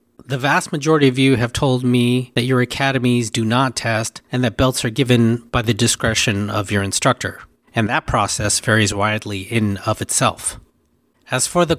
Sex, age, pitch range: male, 30-49, 115-140 Hz